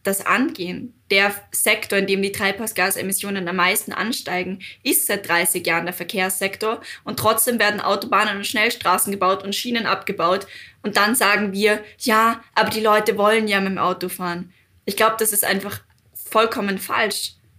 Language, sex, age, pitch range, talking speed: German, female, 20-39, 190-215 Hz, 165 wpm